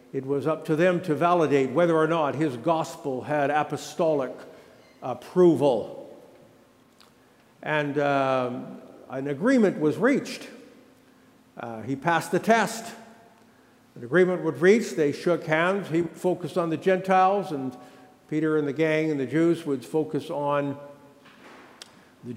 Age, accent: 60-79, American